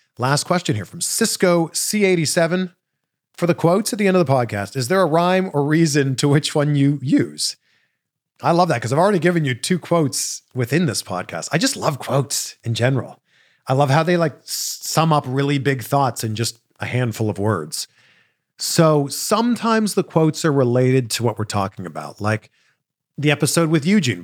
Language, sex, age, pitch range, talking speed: English, male, 40-59, 110-160 Hz, 190 wpm